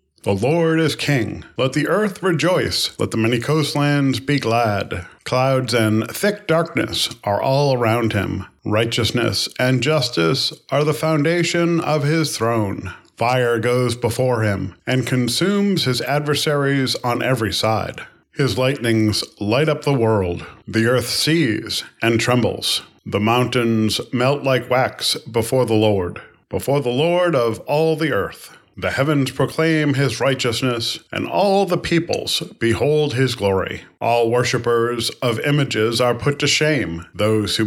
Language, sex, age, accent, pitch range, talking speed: English, male, 40-59, American, 115-145 Hz, 145 wpm